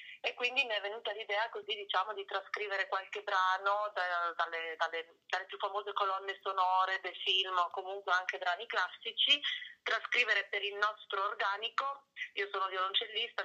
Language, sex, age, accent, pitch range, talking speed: Italian, female, 30-49, native, 180-215 Hz, 150 wpm